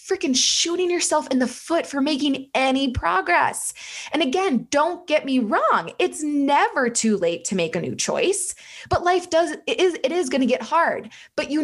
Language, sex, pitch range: English, female, 225-310 Hz